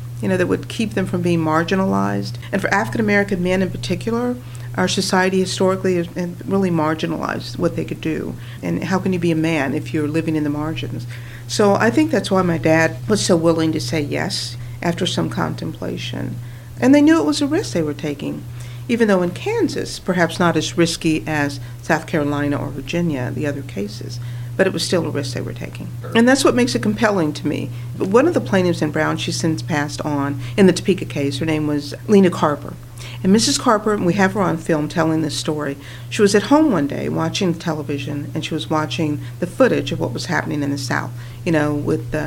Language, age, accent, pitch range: English, 50-69, American, 135-185 Hz